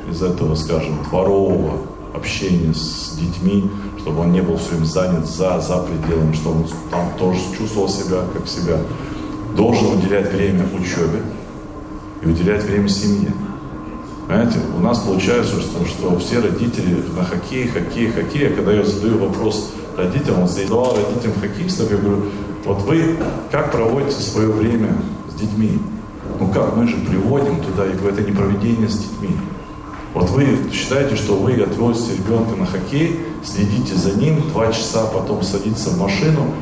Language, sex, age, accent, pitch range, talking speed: Russian, male, 40-59, native, 95-110 Hz, 155 wpm